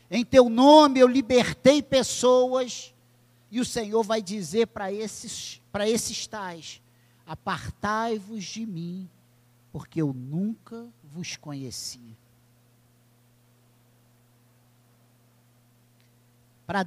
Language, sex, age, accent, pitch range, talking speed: Portuguese, male, 50-69, Brazilian, 120-200 Hz, 85 wpm